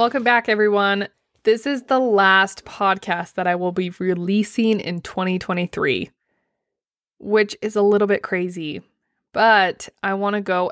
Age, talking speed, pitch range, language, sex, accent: 20-39, 145 wpm, 190-230 Hz, English, female, American